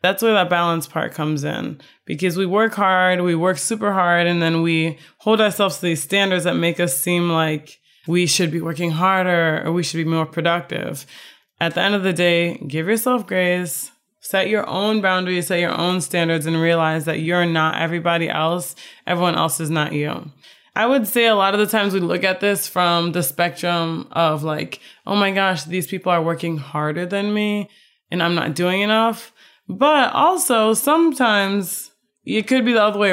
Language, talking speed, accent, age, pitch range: English, 195 wpm, American, 20-39, 165-205 Hz